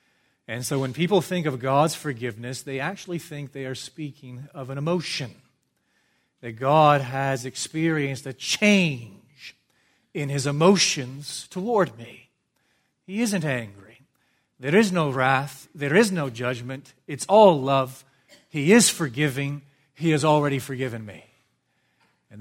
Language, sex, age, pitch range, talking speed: English, male, 40-59, 115-145 Hz, 135 wpm